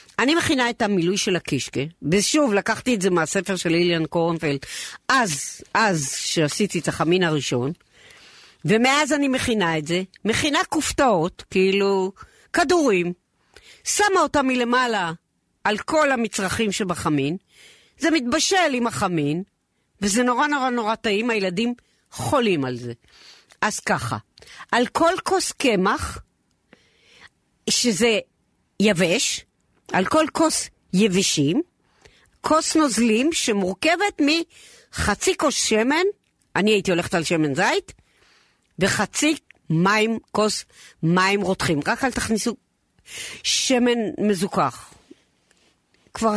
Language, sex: Hebrew, female